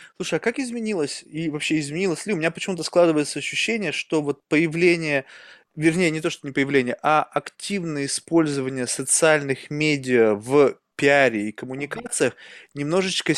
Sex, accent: male, native